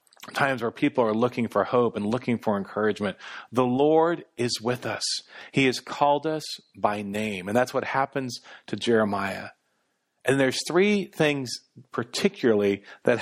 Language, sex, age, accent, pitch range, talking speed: English, male, 40-59, American, 115-160 Hz, 155 wpm